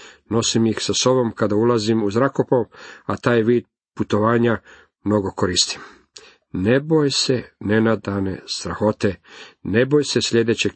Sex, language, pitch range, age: male, Croatian, 100-115 Hz, 50-69